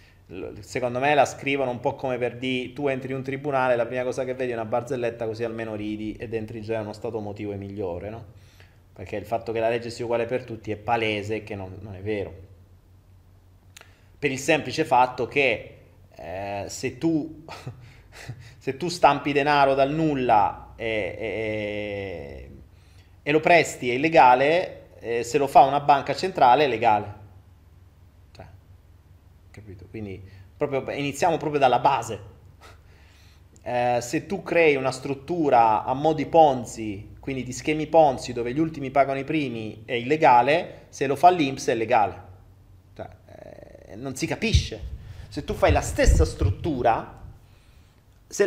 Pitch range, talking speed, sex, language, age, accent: 95-135 Hz, 155 wpm, male, Italian, 20-39, native